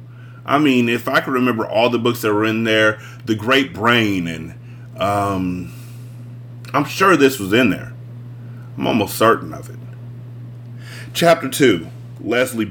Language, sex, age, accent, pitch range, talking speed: English, male, 30-49, American, 115-130 Hz, 150 wpm